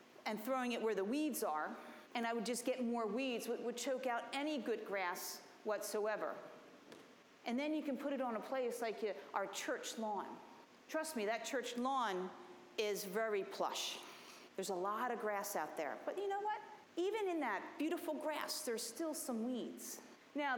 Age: 40-59